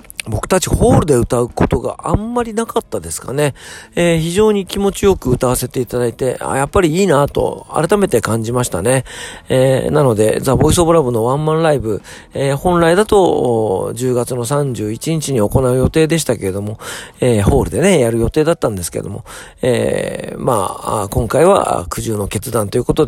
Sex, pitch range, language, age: male, 105-145 Hz, Japanese, 40-59